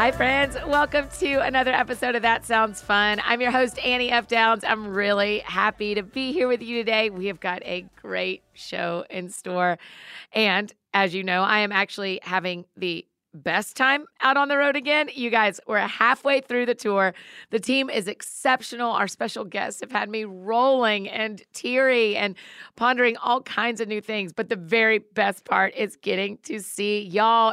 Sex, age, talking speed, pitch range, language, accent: female, 40-59, 190 wpm, 195-240 Hz, English, American